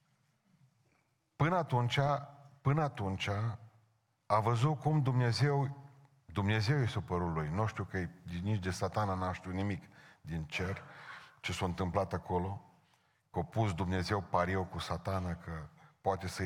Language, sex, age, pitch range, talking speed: Romanian, male, 40-59, 95-135 Hz, 130 wpm